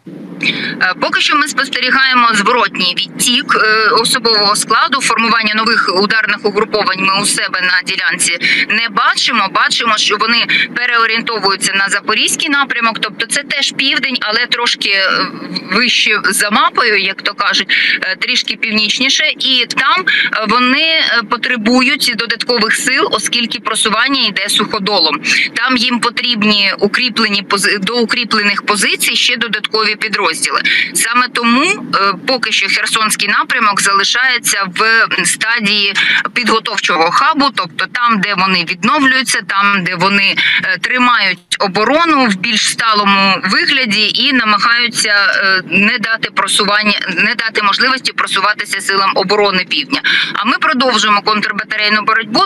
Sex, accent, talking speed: female, native, 115 wpm